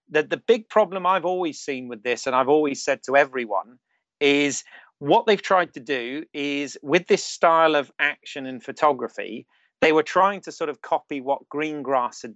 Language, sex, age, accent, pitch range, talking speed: English, male, 30-49, British, 125-160 Hz, 190 wpm